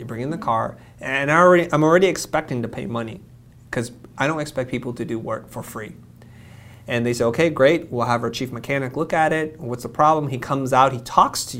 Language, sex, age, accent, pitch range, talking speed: English, male, 30-49, American, 115-130 Hz, 230 wpm